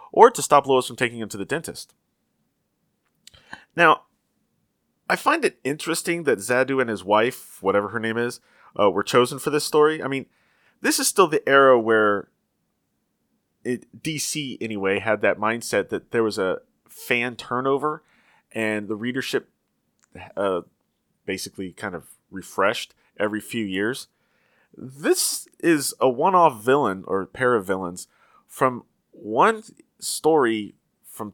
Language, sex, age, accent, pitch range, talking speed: English, male, 30-49, American, 110-145 Hz, 140 wpm